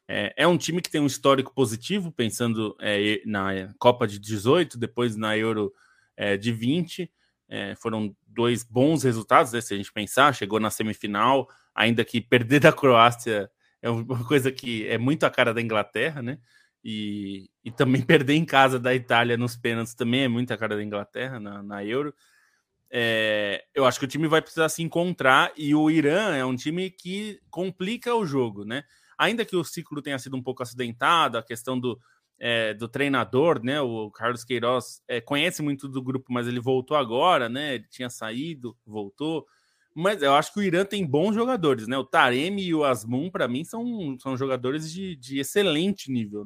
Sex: male